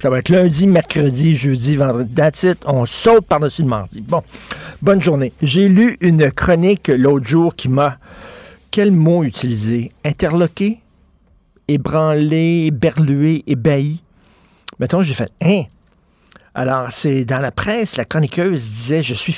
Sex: male